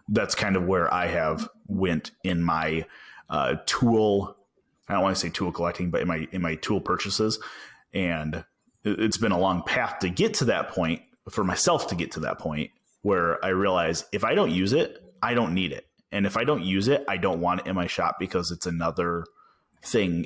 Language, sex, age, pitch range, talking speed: English, male, 30-49, 85-105 Hz, 215 wpm